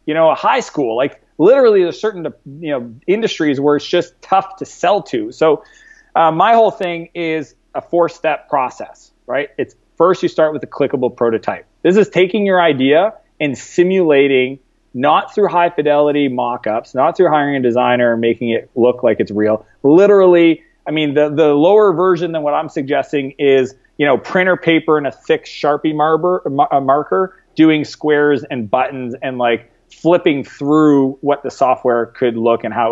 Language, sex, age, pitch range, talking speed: English, male, 30-49, 135-180 Hz, 185 wpm